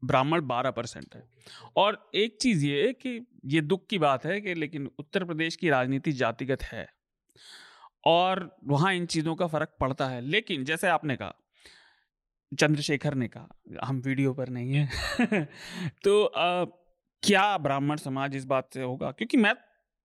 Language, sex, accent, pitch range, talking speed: Hindi, male, native, 145-220 Hz, 155 wpm